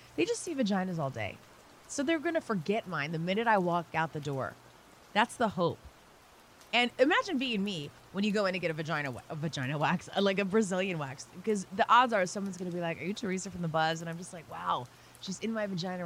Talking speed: 235 wpm